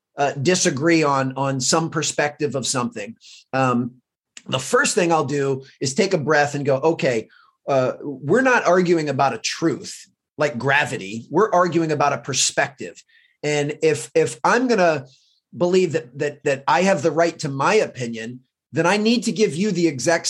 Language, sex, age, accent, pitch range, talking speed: English, male, 30-49, American, 145-190 Hz, 175 wpm